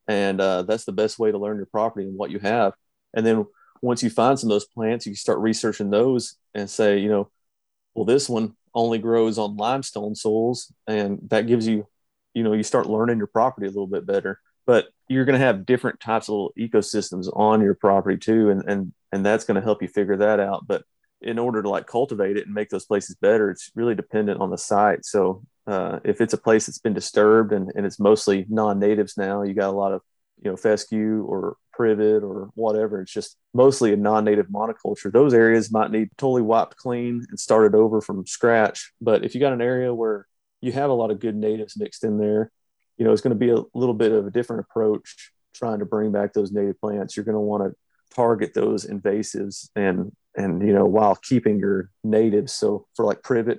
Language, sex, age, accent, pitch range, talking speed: English, male, 30-49, American, 105-115 Hz, 220 wpm